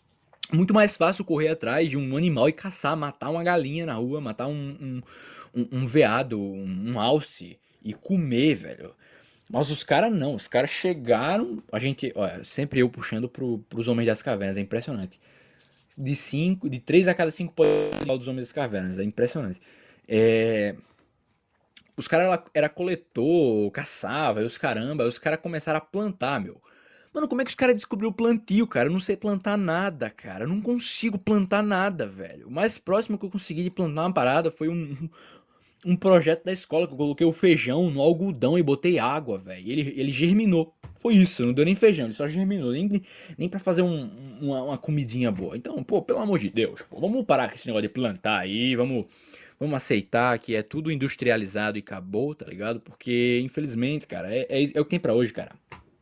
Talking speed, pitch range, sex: 195 wpm, 120-180 Hz, male